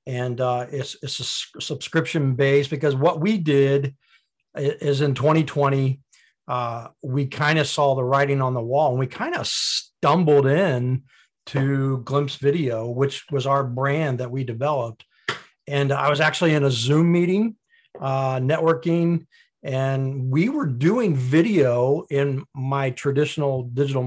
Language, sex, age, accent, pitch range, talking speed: English, male, 40-59, American, 130-155 Hz, 145 wpm